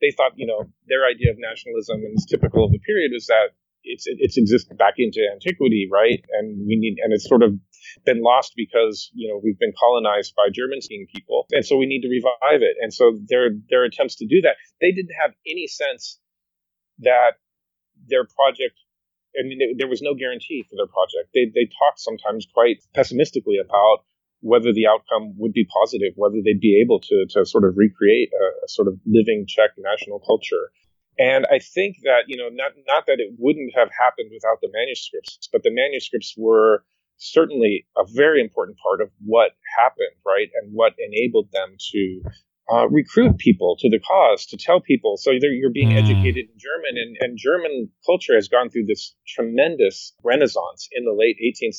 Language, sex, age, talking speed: English, male, 30-49, 190 wpm